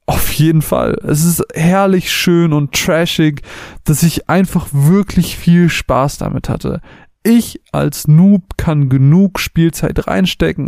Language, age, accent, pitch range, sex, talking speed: German, 30-49, German, 145-170 Hz, male, 135 wpm